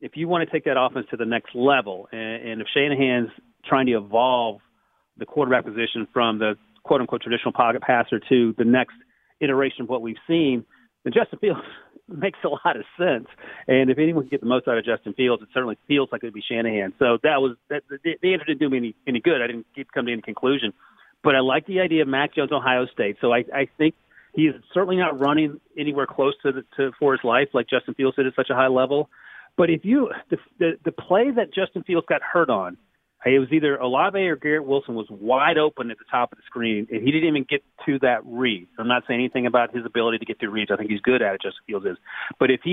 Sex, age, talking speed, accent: male, 40-59, 250 wpm, American